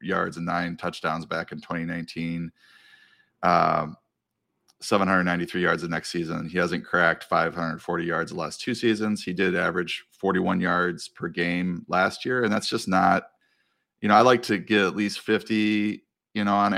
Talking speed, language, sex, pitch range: 170 wpm, English, male, 85-105 Hz